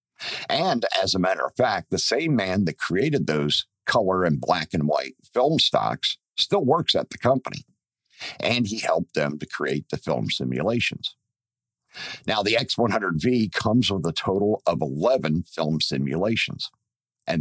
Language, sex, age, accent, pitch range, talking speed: English, male, 50-69, American, 80-120 Hz, 155 wpm